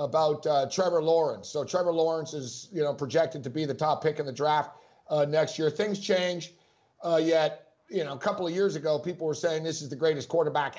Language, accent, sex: English, American, male